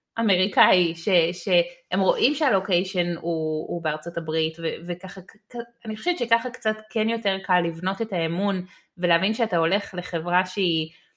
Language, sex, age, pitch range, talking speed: Hebrew, female, 30-49, 170-210 Hz, 130 wpm